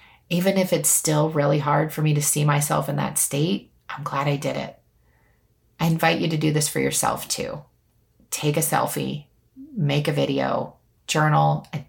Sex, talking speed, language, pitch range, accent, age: female, 180 wpm, English, 145-180 Hz, American, 30-49